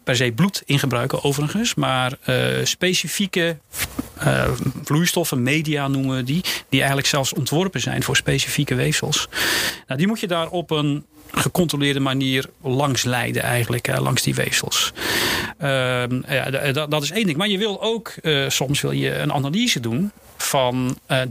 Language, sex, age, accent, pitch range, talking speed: Dutch, male, 40-59, Dutch, 125-155 Hz, 150 wpm